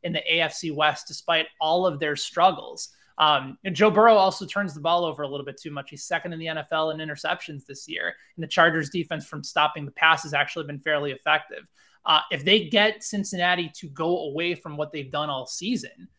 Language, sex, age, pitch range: English, male, 20-39, 145-180 Hz